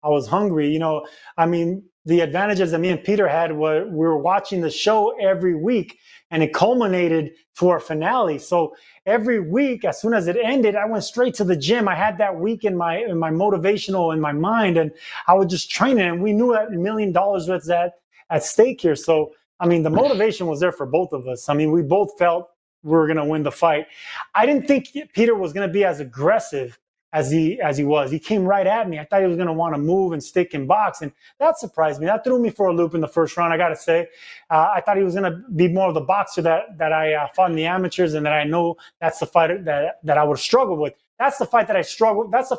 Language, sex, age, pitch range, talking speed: English, male, 30-49, 160-210 Hz, 260 wpm